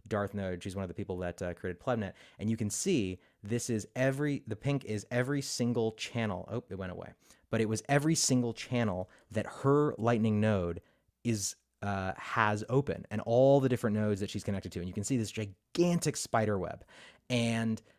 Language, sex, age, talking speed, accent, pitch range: English, male, 30-49, 200 wpm, American, 95-120 Hz